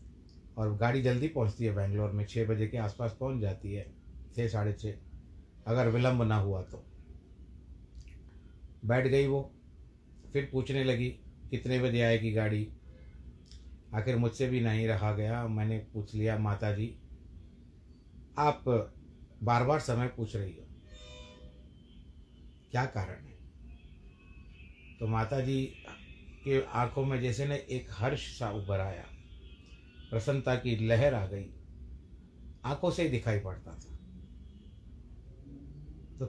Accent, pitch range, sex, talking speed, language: native, 80-120 Hz, male, 125 wpm, Hindi